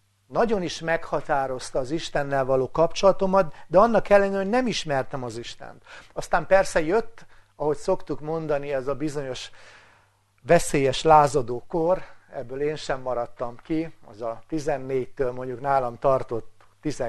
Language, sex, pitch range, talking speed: English, male, 130-165 Hz, 130 wpm